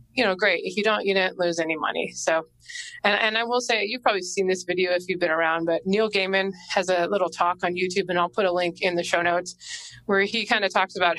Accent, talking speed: American, 270 wpm